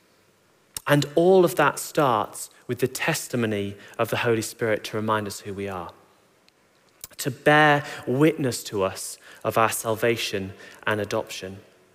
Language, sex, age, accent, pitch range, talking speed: English, male, 30-49, British, 120-175 Hz, 140 wpm